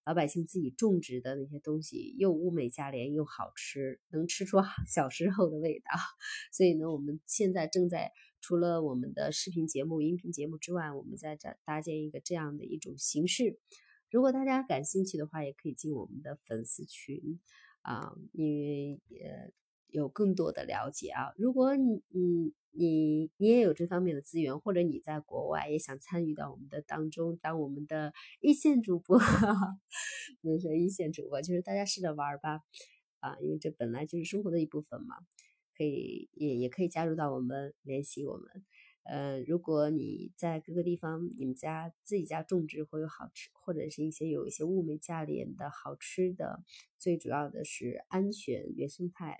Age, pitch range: 20-39, 150-185 Hz